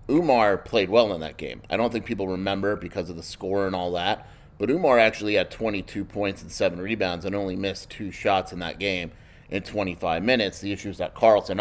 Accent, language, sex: American, English, male